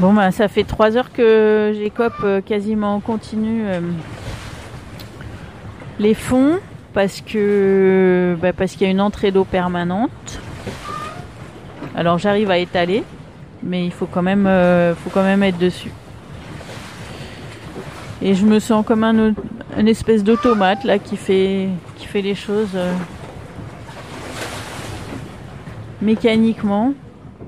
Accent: French